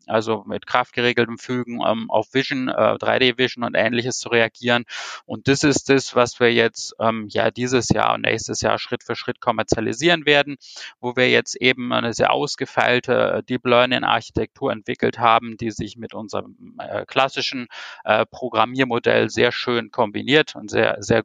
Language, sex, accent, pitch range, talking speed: English, male, German, 115-130 Hz, 150 wpm